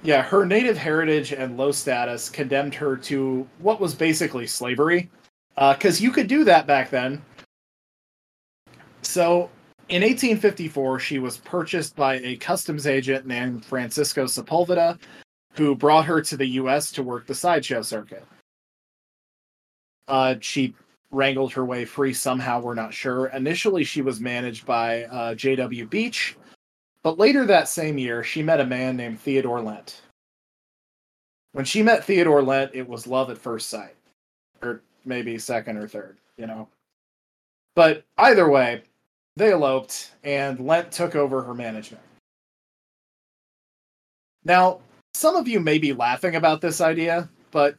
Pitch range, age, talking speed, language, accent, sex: 125-165 Hz, 20-39, 145 wpm, English, American, male